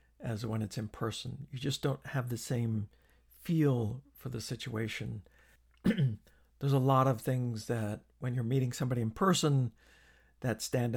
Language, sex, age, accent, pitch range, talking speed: English, male, 60-79, American, 110-135 Hz, 160 wpm